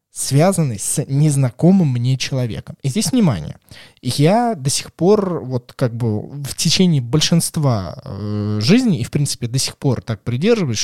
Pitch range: 115-155 Hz